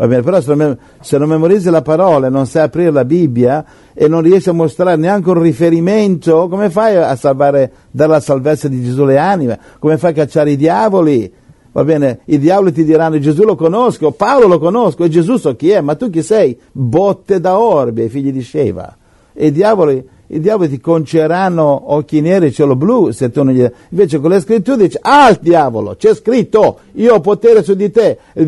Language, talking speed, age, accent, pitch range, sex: Italian, 215 wpm, 60-79, native, 140-195 Hz, male